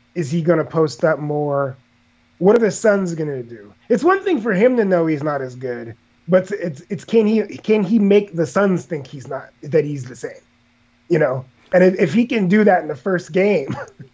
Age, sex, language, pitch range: 30-49, male, English, 145-215 Hz